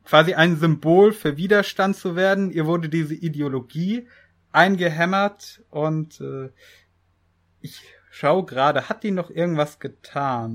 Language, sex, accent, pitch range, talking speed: German, male, German, 130-175 Hz, 125 wpm